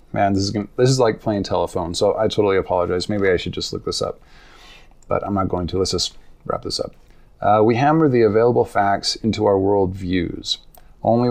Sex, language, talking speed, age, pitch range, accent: male, English, 210 wpm, 30-49, 95-120 Hz, American